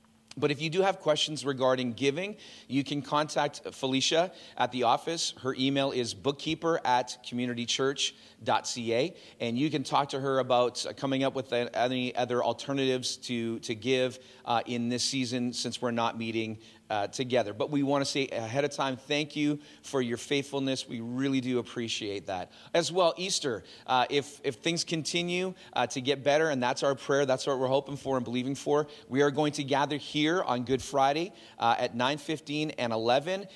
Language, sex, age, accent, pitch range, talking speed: English, male, 40-59, American, 125-150 Hz, 185 wpm